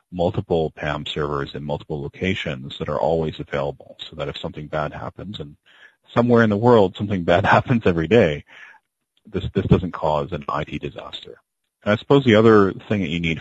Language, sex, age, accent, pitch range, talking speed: English, male, 40-59, American, 75-95 Hz, 190 wpm